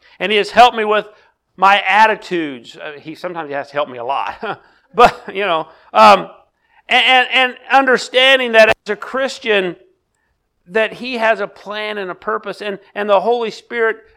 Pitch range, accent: 160-215 Hz, American